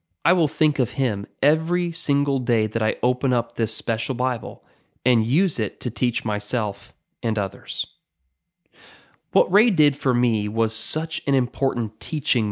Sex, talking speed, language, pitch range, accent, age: male, 160 wpm, English, 115-160 Hz, American, 30-49